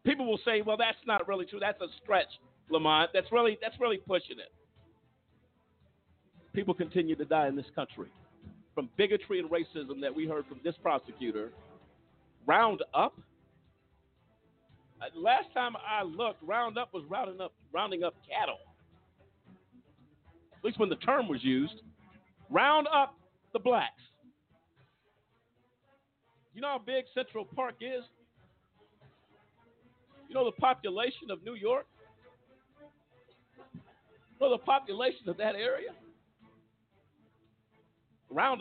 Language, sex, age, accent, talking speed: English, male, 50-69, American, 125 wpm